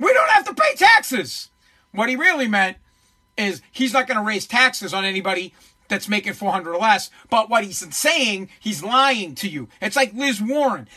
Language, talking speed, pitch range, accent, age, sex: English, 195 wpm, 205-260 Hz, American, 40-59, male